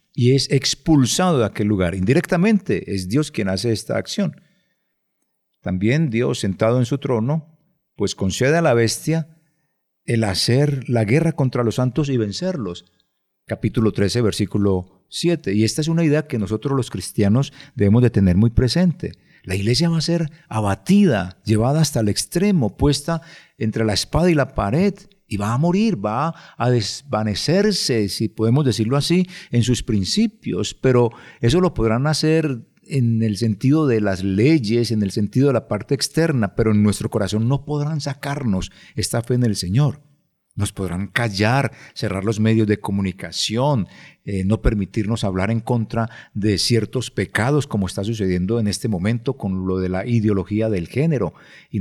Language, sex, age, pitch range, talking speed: Spanish, male, 50-69, 105-150 Hz, 165 wpm